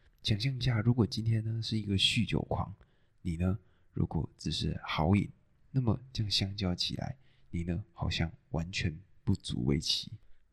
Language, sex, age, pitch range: Chinese, male, 20-39, 90-115 Hz